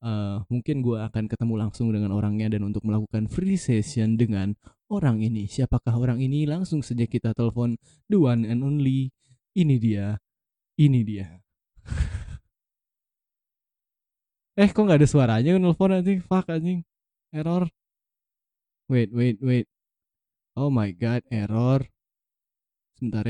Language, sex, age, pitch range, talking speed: Indonesian, male, 20-39, 105-130 Hz, 125 wpm